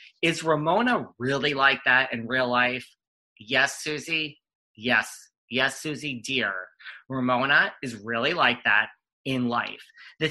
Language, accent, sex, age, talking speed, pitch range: English, American, male, 30-49, 130 wpm, 120-155 Hz